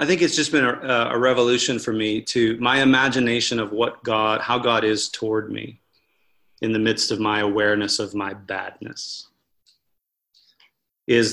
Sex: male